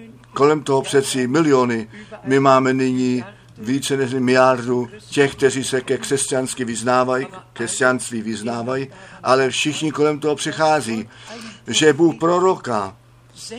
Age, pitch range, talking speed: 50-69, 120-140 Hz, 110 wpm